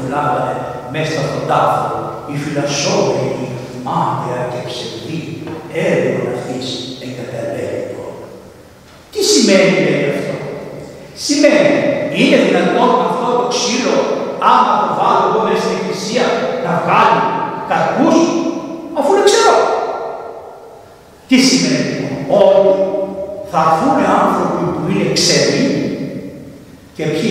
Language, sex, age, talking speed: Greek, male, 60-79, 100 wpm